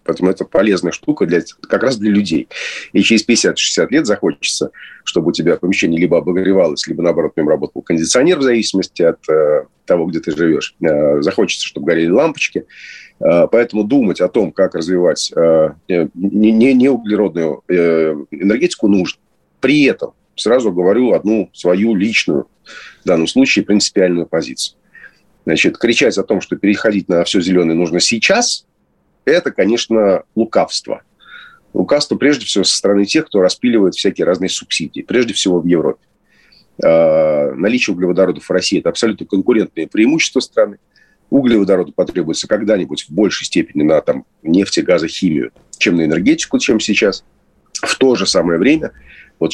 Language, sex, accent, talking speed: Russian, male, native, 150 wpm